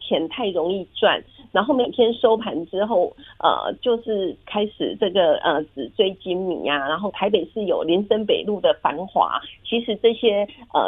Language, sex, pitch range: Chinese, female, 185-245 Hz